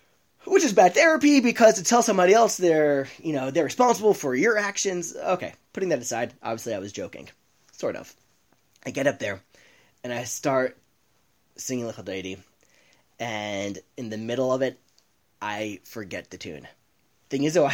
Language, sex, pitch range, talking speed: English, male, 125-190 Hz, 170 wpm